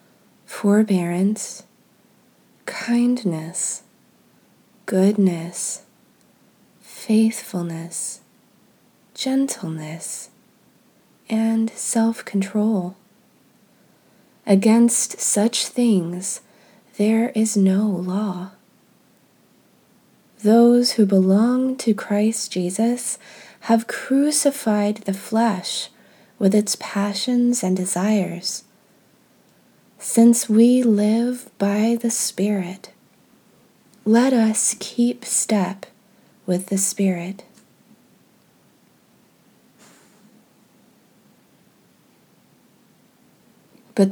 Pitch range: 190-230 Hz